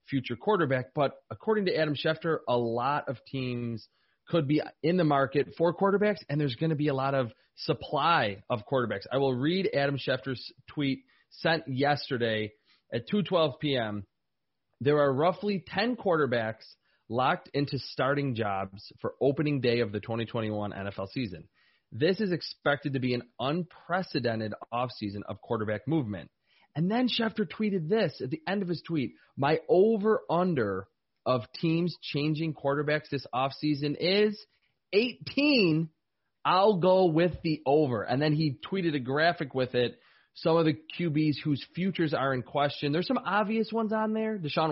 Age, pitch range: 30-49, 125-170 Hz